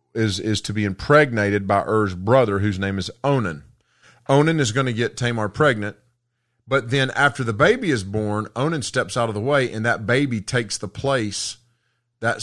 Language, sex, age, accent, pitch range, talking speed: English, male, 40-59, American, 105-125 Hz, 190 wpm